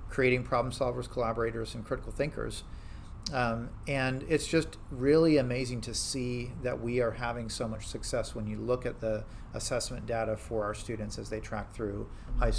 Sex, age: male, 40-59